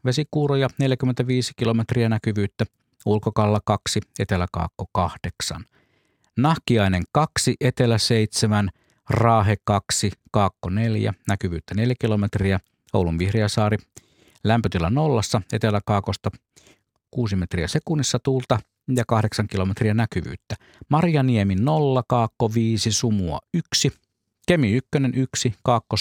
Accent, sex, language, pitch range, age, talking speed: native, male, Finnish, 100-125 Hz, 50-69, 95 wpm